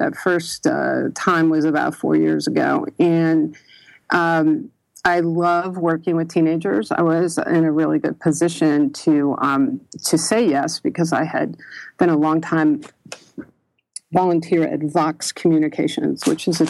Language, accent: English, American